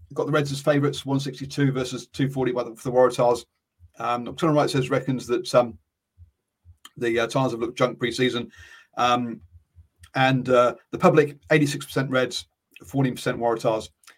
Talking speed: 150 wpm